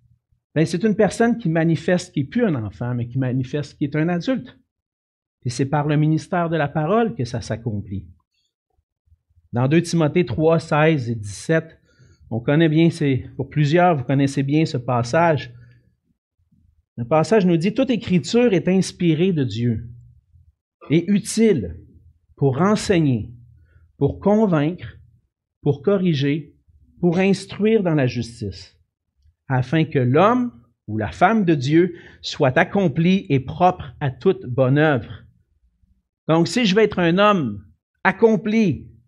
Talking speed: 145 wpm